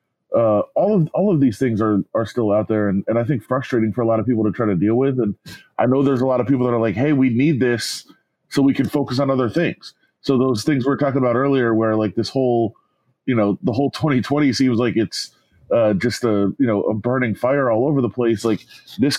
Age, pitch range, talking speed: 30-49, 110-135 Hz, 260 wpm